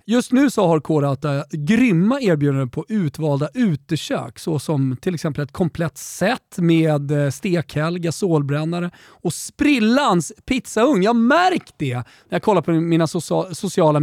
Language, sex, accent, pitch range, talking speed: Swedish, male, native, 135-185 Hz, 140 wpm